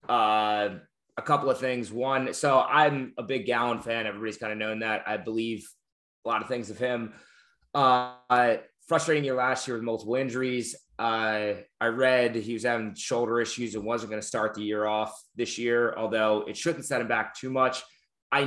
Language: English